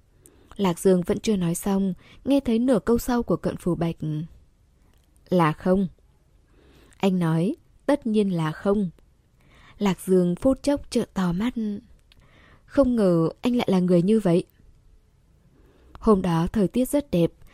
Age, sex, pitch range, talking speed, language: 10-29, female, 175-235 Hz, 150 wpm, Vietnamese